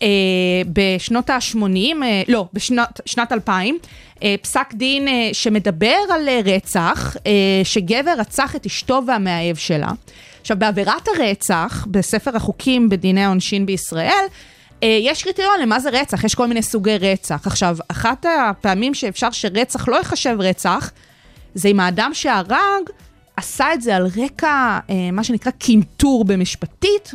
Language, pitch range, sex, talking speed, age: Hebrew, 195-270 Hz, female, 135 wpm, 20-39